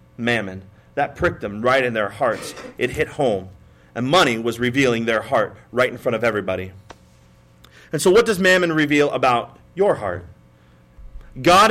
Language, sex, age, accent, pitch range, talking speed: English, male, 30-49, American, 120-180 Hz, 165 wpm